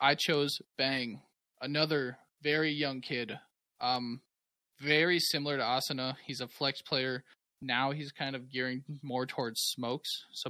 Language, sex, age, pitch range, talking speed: English, male, 20-39, 115-145 Hz, 145 wpm